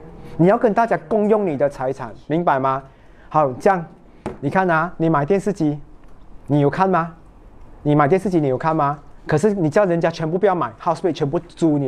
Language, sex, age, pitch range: Chinese, male, 30-49, 135-175 Hz